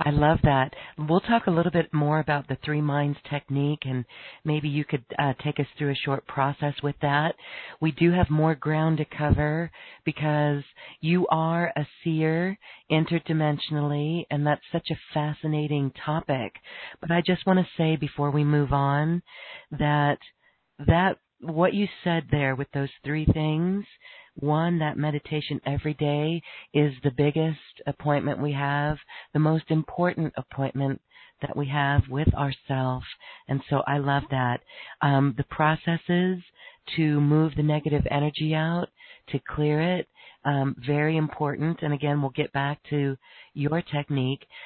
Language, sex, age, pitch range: English, female, 40-59, 140-160 Hz